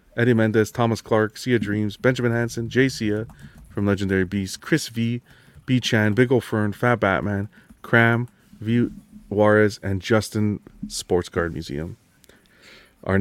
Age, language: 30-49, English